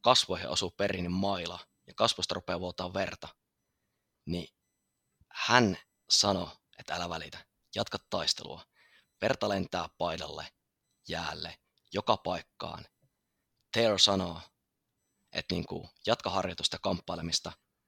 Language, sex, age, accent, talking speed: Finnish, male, 20-39, native, 105 wpm